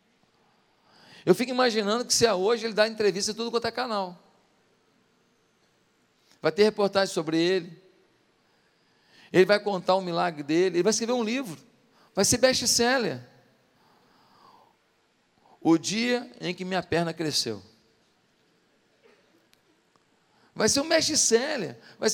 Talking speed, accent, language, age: 125 wpm, Brazilian, Portuguese, 40-59